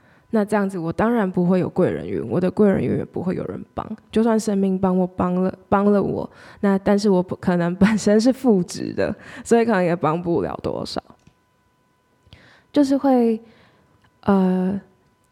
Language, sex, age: Chinese, female, 10-29